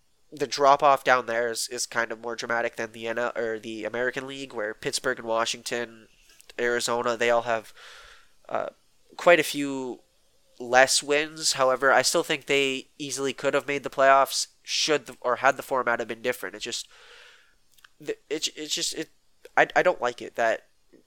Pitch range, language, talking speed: 120-145 Hz, English, 180 wpm